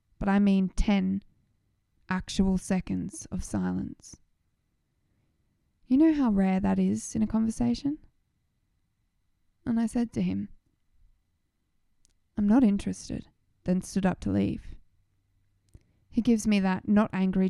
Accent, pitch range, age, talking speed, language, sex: Australian, 190-235 Hz, 20-39, 125 wpm, English, female